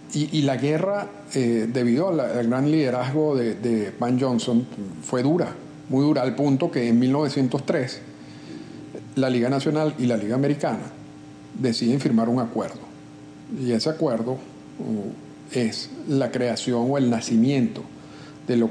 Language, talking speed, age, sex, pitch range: Spanish, 140 wpm, 50-69, male, 115-135 Hz